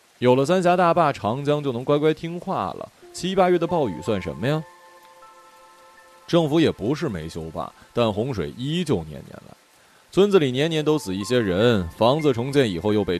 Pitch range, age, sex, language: 105-170 Hz, 20-39, male, Chinese